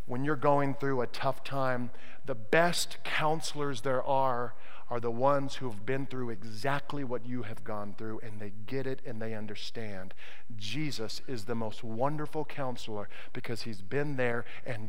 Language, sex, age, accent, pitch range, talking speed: English, male, 50-69, American, 125-175 Hz, 175 wpm